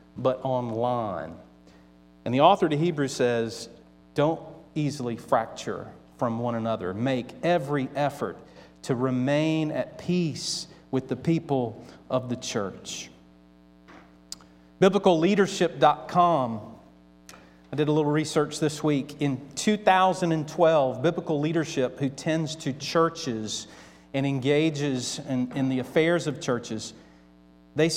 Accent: American